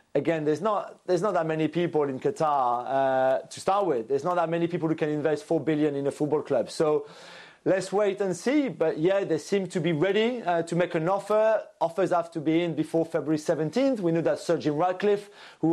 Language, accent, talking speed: English, French, 225 wpm